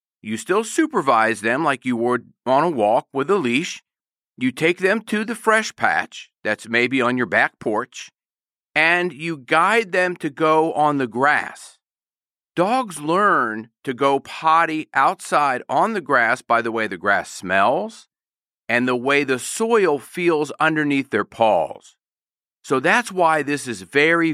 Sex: male